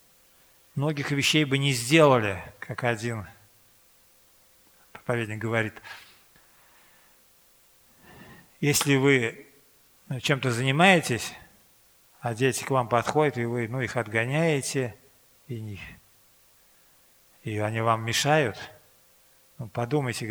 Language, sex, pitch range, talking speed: Russian, male, 120-150 Hz, 85 wpm